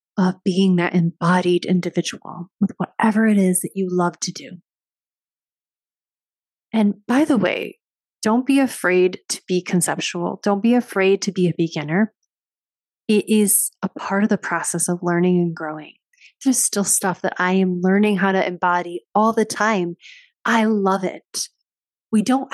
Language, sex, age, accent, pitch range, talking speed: English, female, 30-49, American, 180-220 Hz, 160 wpm